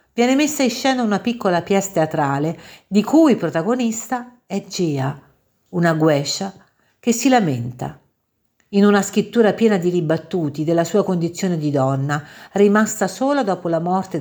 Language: Italian